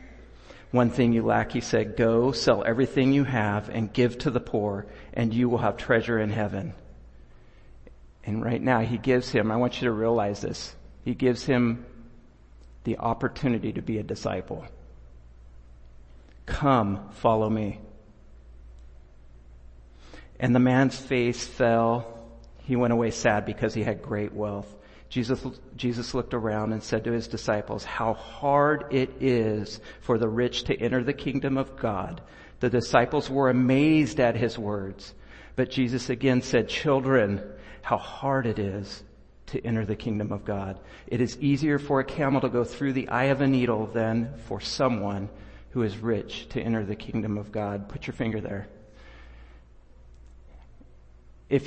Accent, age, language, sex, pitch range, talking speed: American, 50-69, English, male, 100-125 Hz, 160 wpm